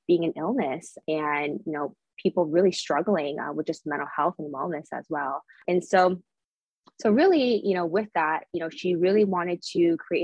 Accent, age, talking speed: American, 20-39, 195 wpm